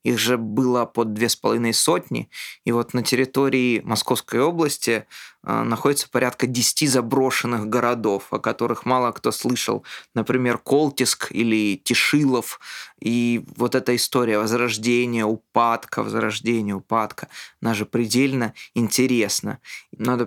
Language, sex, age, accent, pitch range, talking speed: Russian, male, 20-39, native, 110-125 Hz, 120 wpm